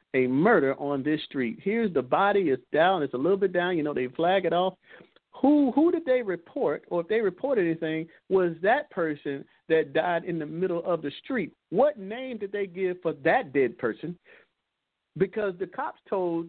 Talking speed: 200 wpm